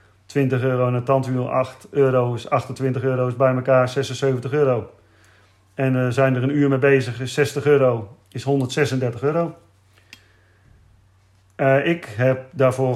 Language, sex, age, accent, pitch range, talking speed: Dutch, male, 40-59, Dutch, 115-145 Hz, 155 wpm